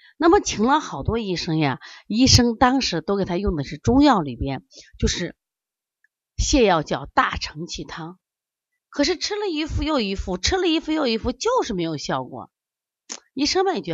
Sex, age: female, 30-49